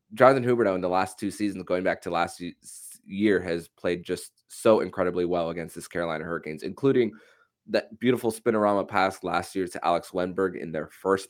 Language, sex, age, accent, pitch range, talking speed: English, male, 20-39, American, 85-110 Hz, 185 wpm